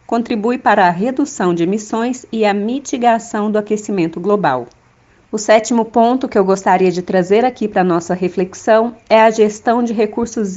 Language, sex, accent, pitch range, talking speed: Portuguese, female, Brazilian, 190-230 Hz, 170 wpm